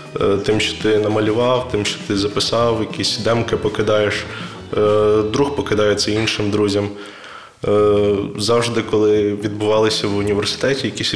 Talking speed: 115 wpm